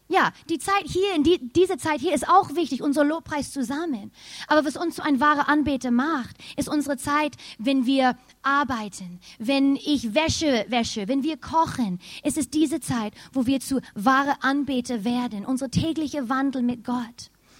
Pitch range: 255-320 Hz